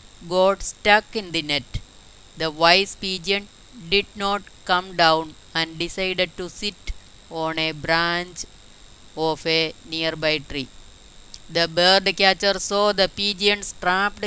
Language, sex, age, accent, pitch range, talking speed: Malayalam, female, 20-39, native, 150-185 Hz, 125 wpm